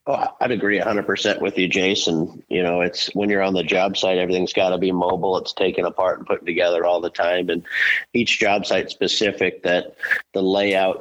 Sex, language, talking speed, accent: male, English, 220 wpm, American